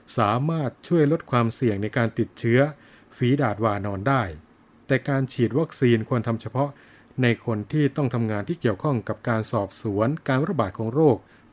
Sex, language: male, Thai